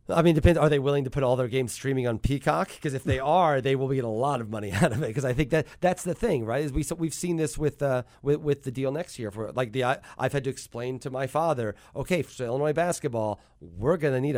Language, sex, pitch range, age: English, male, 115-150 Hz, 40-59